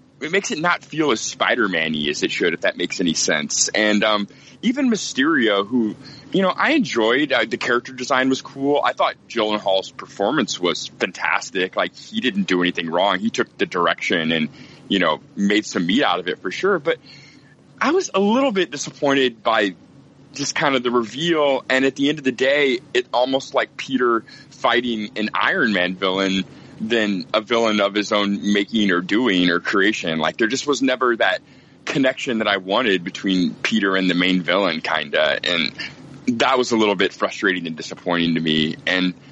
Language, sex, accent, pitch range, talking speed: English, male, American, 100-140 Hz, 200 wpm